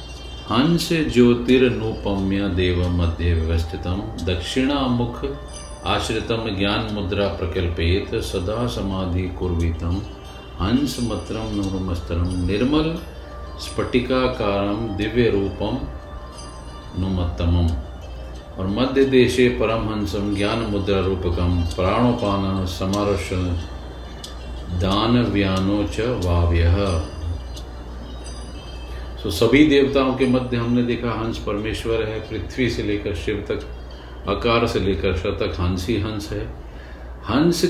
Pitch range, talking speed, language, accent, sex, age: 85-120 Hz, 70 wpm, Hindi, native, male, 40-59